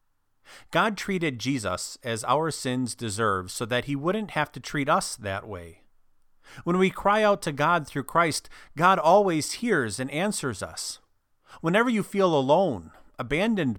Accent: American